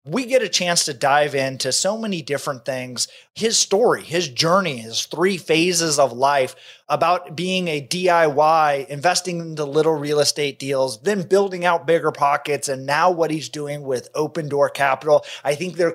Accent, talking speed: American, 180 wpm